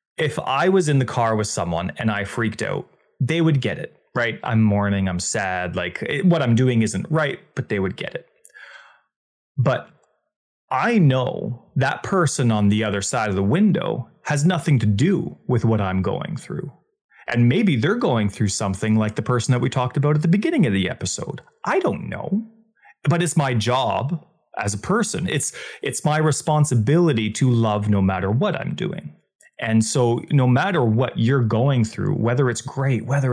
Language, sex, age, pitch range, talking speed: English, male, 30-49, 110-145 Hz, 190 wpm